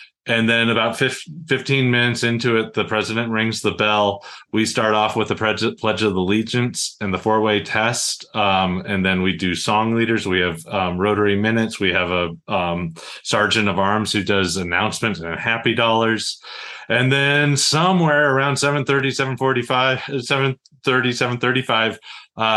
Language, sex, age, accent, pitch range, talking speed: English, male, 30-49, American, 100-125 Hz, 150 wpm